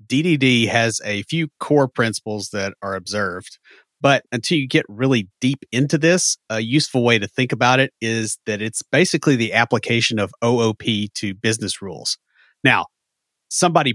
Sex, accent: male, American